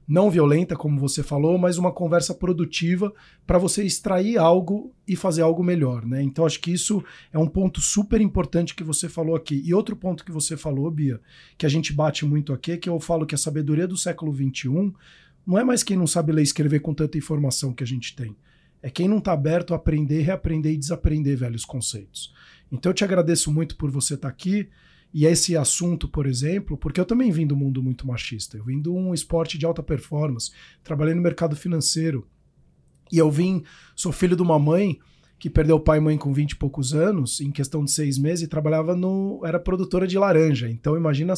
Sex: male